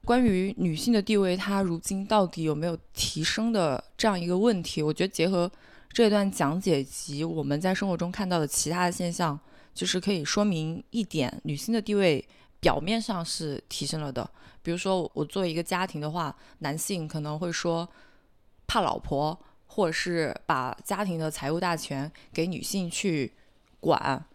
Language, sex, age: Chinese, female, 20-39